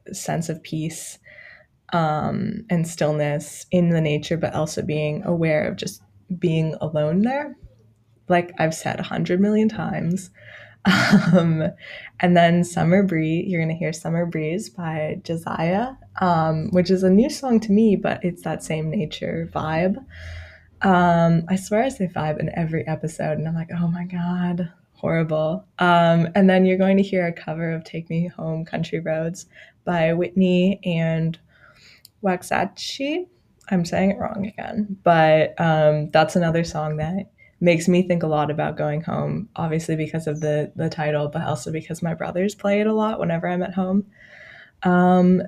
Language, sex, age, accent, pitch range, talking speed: English, female, 20-39, American, 160-195 Hz, 165 wpm